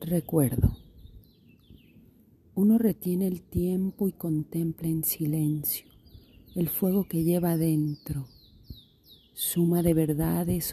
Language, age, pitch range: Spanish, 40-59, 150-170 Hz